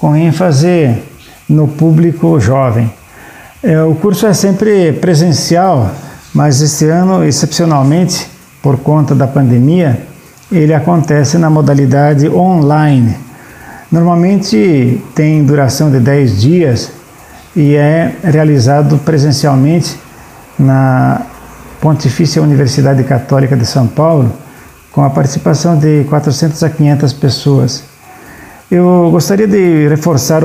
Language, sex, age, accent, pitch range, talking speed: Portuguese, male, 60-79, Brazilian, 135-160 Hz, 100 wpm